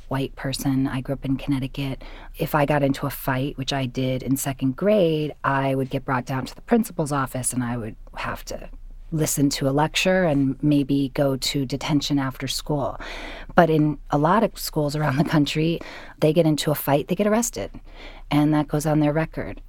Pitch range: 135-155 Hz